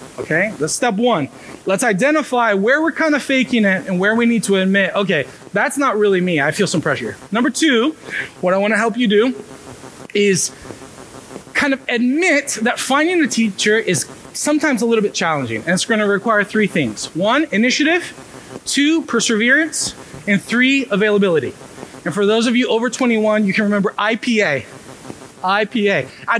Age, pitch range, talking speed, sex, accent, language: 30-49, 195-255 Hz, 175 wpm, male, American, English